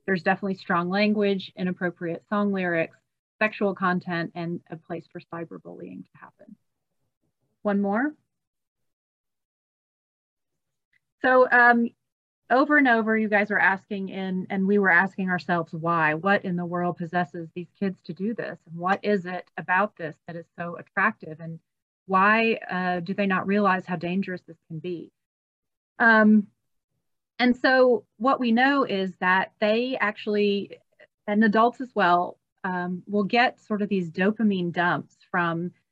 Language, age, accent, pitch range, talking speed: English, 30-49, American, 175-210 Hz, 145 wpm